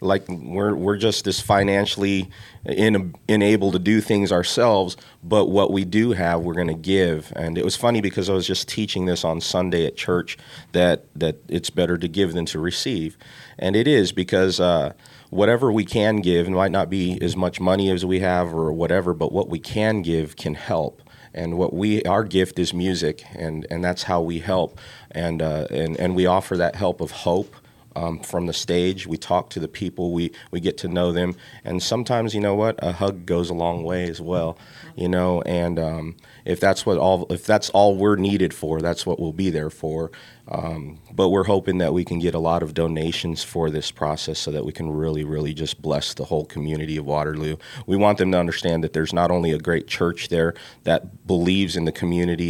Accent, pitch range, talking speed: American, 80-95 Hz, 215 wpm